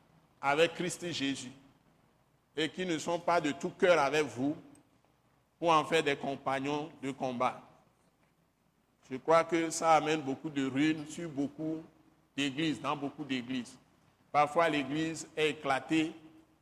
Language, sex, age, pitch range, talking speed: French, male, 60-79, 135-155 Hz, 140 wpm